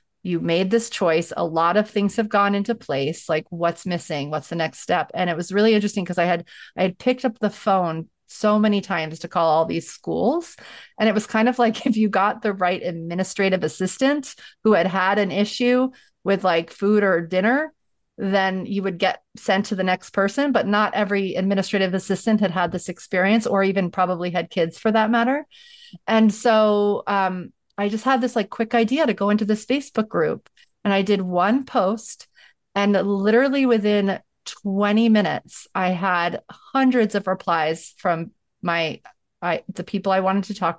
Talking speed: 190 wpm